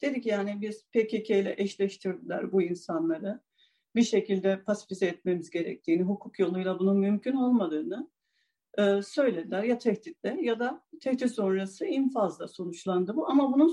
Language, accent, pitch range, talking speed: Turkish, native, 190-275 Hz, 140 wpm